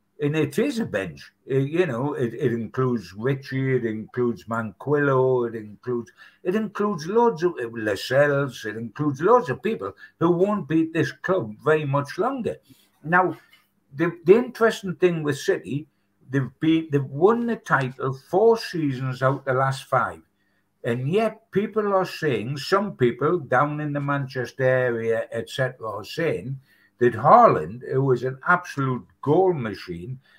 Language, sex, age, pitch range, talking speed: English, male, 60-79, 120-170 Hz, 150 wpm